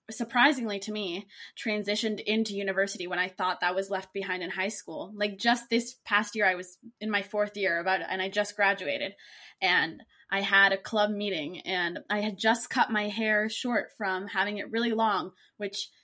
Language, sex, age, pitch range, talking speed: English, female, 20-39, 195-245 Hz, 195 wpm